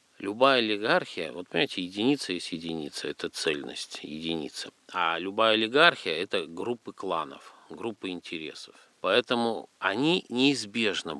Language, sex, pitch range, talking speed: Russian, male, 90-120 Hz, 115 wpm